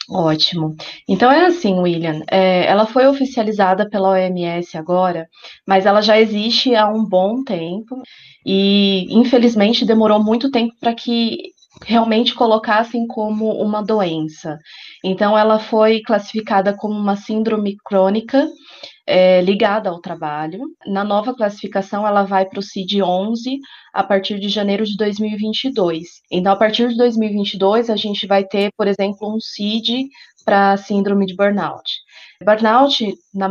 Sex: female